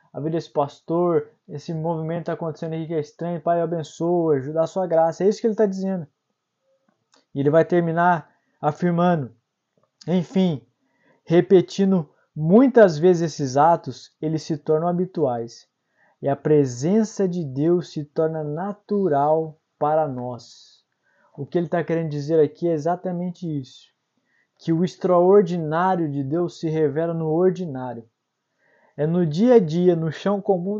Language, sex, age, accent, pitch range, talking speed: Portuguese, male, 20-39, Brazilian, 155-200 Hz, 150 wpm